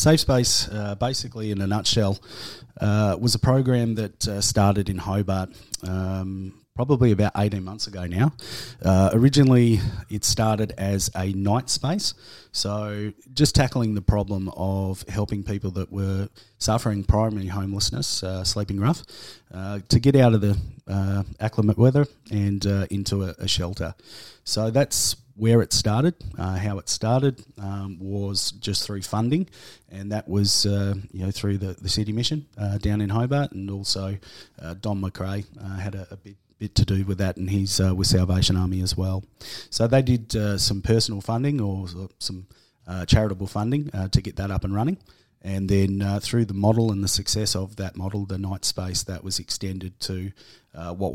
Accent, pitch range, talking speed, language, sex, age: Australian, 95-110 Hz, 180 wpm, English, male, 30-49